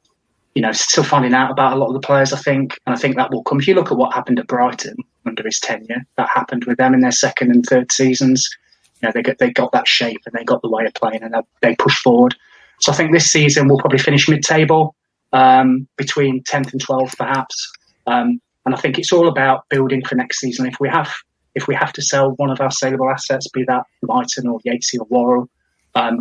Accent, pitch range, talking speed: British, 120-140 Hz, 245 wpm